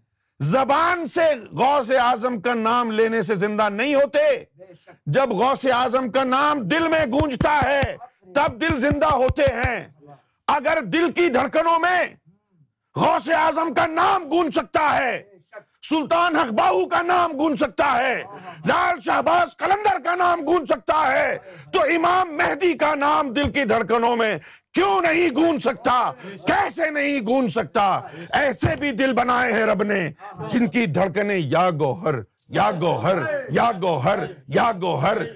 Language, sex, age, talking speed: Urdu, male, 50-69, 150 wpm